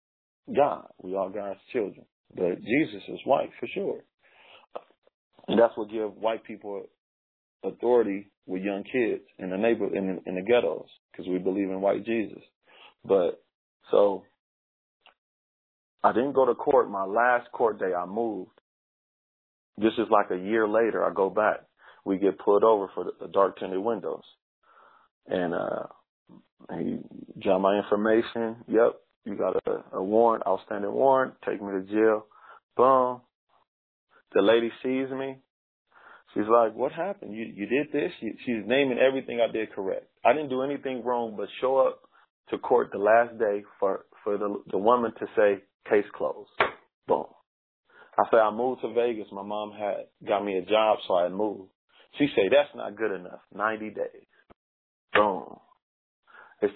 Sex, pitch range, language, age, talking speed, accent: male, 100-130 Hz, English, 40-59, 160 wpm, American